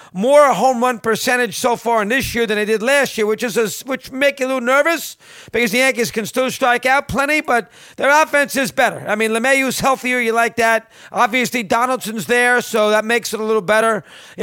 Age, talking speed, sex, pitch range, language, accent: 50-69, 225 wpm, male, 210-245 Hz, English, American